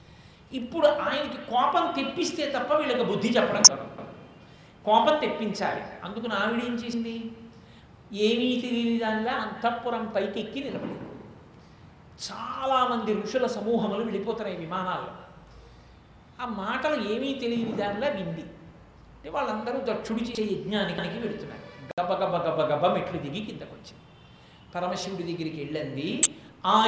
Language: Telugu